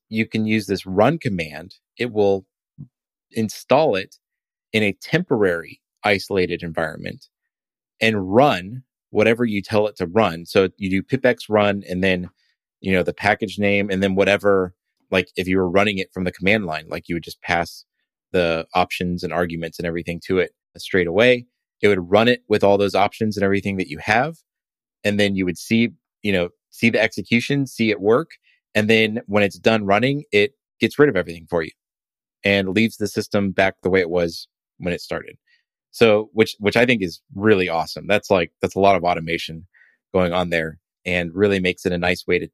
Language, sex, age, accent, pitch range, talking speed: English, male, 30-49, American, 90-110 Hz, 195 wpm